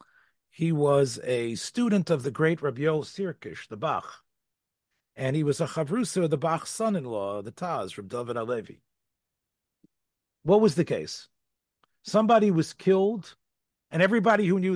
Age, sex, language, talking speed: 40-59, male, English, 140 wpm